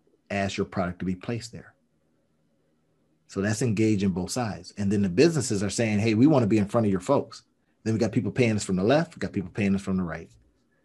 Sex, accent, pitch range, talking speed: male, American, 95-130 Hz, 245 wpm